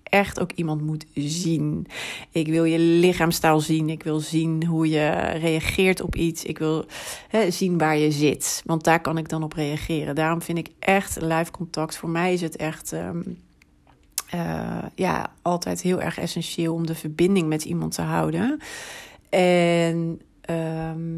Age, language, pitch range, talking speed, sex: 40-59, Dutch, 160-180 Hz, 160 wpm, female